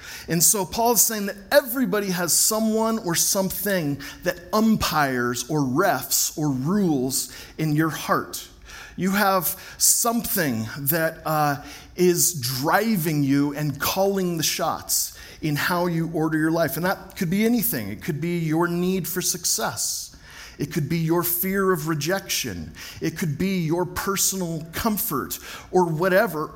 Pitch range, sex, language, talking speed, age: 145-190 Hz, male, English, 145 wpm, 40-59